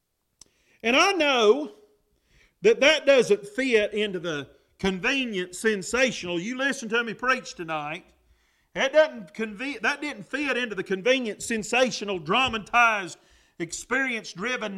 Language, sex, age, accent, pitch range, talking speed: English, male, 40-59, American, 190-250 Hz, 105 wpm